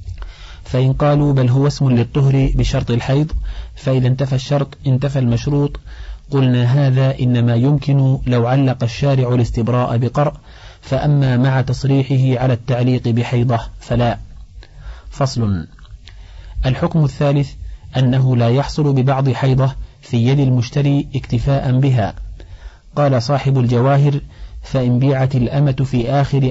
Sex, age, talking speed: male, 40-59, 115 wpm